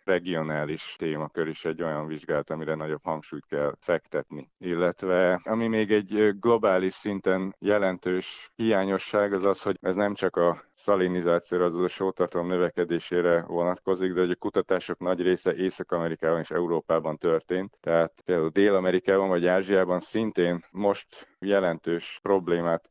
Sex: male